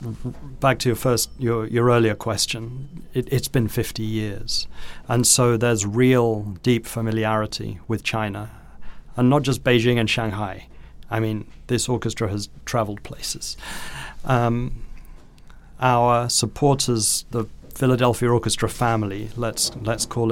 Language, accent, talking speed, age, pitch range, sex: English, British, 130 wpm, 40-59, 110-125 Hz, male